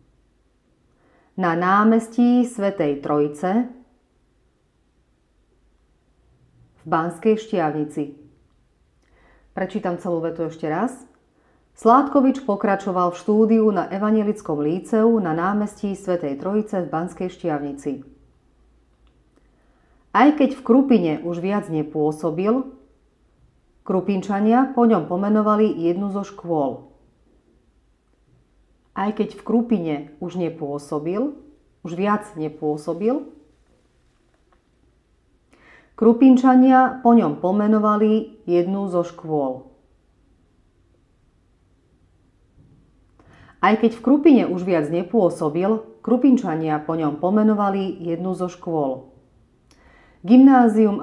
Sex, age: female, 40-59